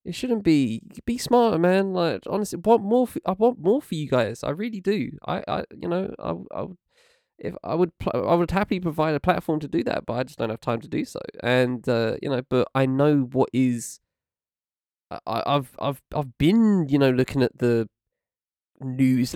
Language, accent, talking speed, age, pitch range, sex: English, British, 215 wpm, 20-39, 120-170 Hz, male